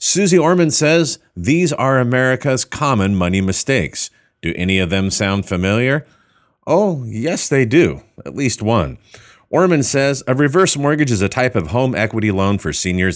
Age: 40-59